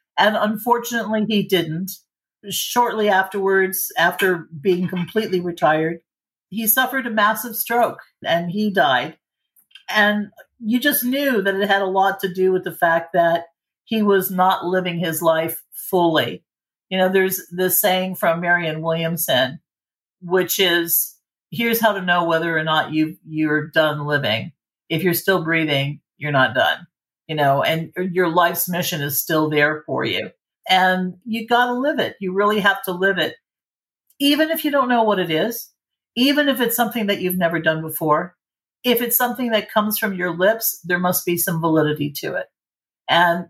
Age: 50-69